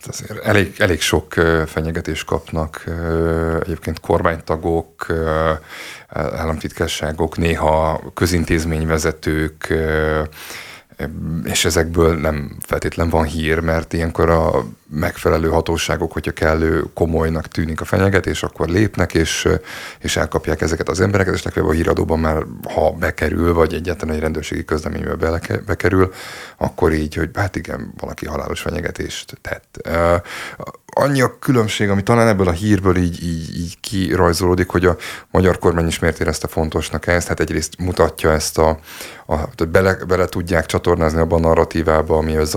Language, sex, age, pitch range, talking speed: Hungarian, male, 30-49, 80-95 Hz, 130 wpm